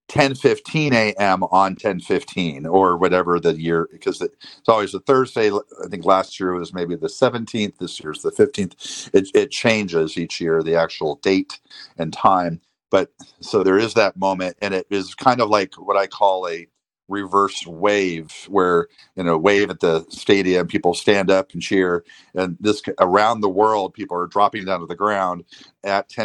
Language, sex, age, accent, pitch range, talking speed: English, male, 50-69, American, 85-100 Hz, 185 wpm